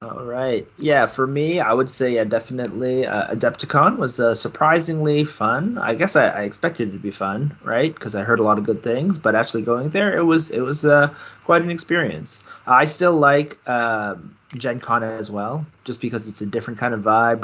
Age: 20-39